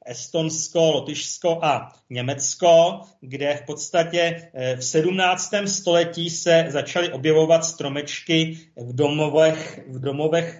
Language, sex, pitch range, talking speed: Czech, male, 140-170 Hz, 95 wpm